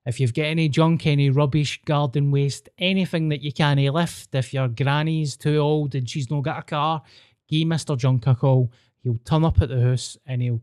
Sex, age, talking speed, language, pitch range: male, 20-39, 215 wpm, English, 125-145 Hz